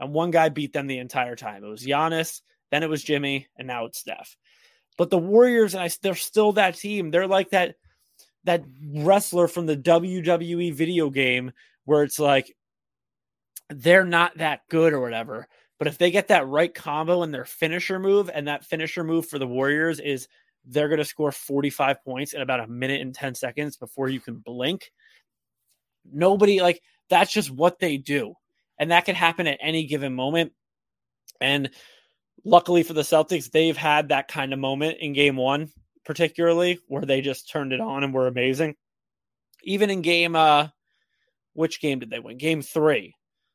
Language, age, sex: English, 20-39, male